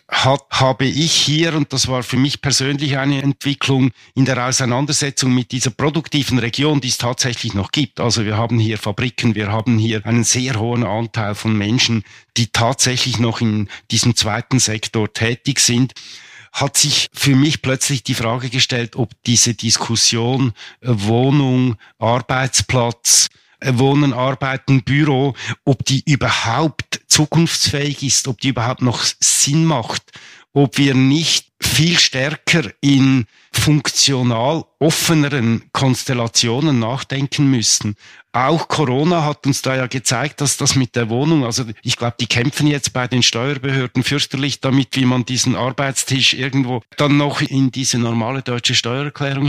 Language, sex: German, male